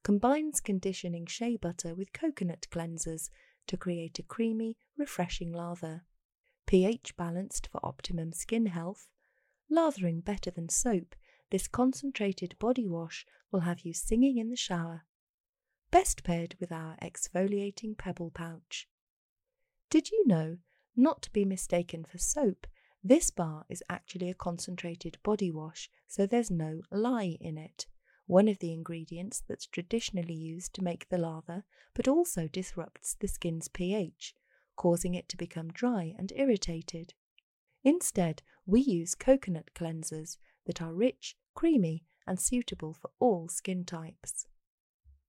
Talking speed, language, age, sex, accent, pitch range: 135 wpm, English, 30-49, female, British, 170-225 Hz